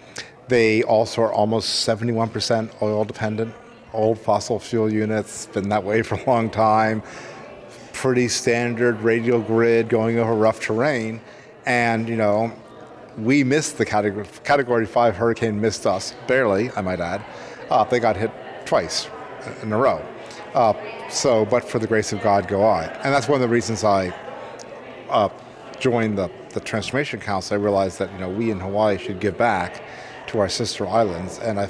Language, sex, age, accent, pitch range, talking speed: English, male, 40-59, American, 105-120 Hz, 170 wpm